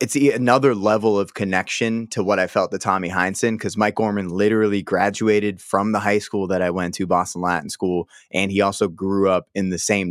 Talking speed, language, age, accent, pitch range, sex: 215 wpm, English, 20-39, American, 90-105 Hz, male